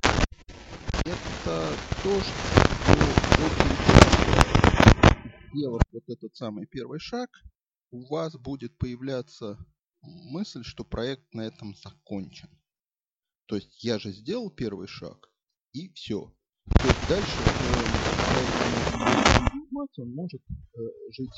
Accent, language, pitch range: native, Russian, 100-130 Hz